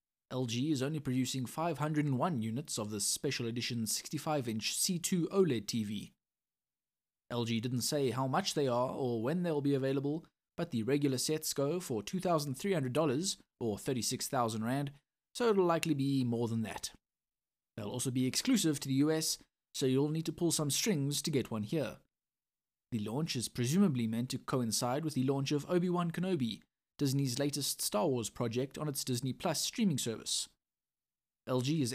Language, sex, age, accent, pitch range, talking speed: English, male, 20-39, South African, 125-160 Hz, 165 wpm